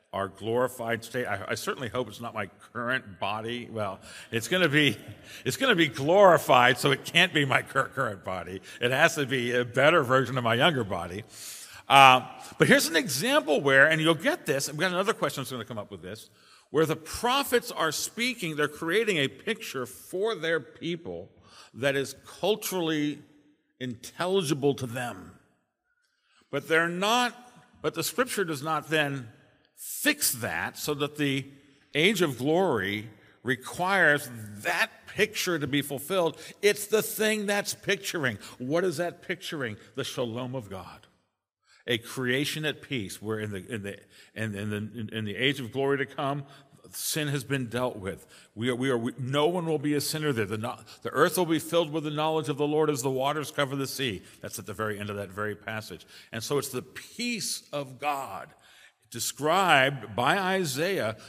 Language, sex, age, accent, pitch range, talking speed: English, male, 50-69, American, 115-160 Hz, 185 wpm